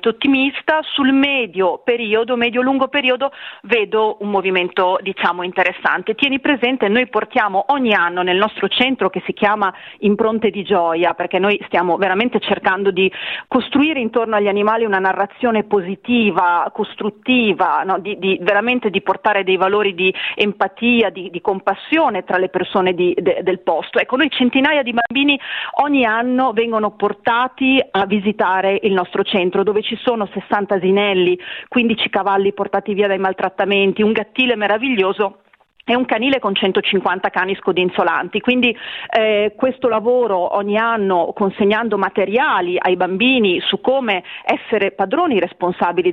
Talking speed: 145 wpm